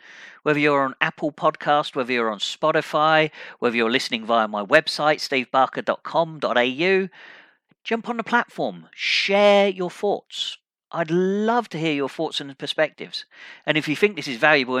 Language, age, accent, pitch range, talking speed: English, 40-59, British, 145-205 Hz, 155 wpm